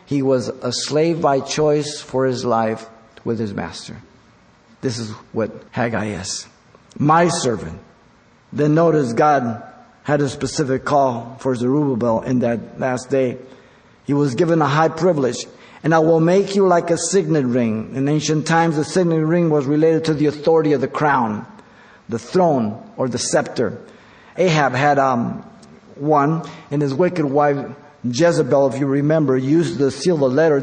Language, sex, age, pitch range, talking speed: English, male, 50-69, 130-160 Hz, 165 wpm